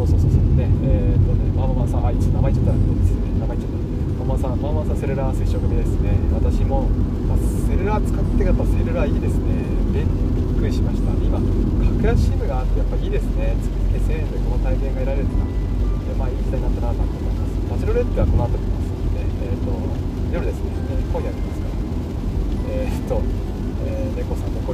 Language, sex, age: Japanese, male, 20-39